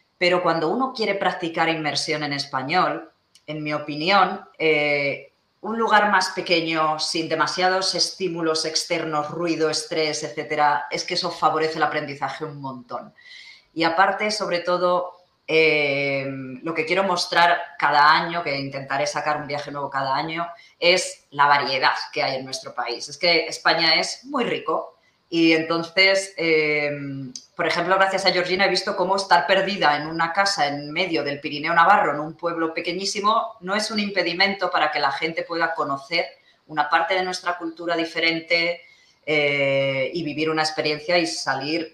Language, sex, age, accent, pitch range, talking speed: Spanish, female, 20-39, Spanish, 150-180 Hz, 160 wpm